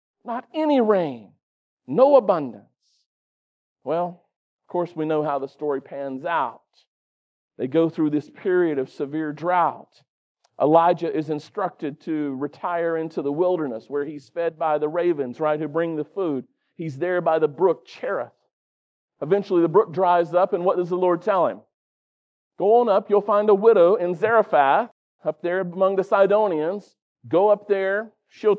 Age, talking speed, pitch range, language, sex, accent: 40-59, 165 wpm, 165-210 Hz, English, male, American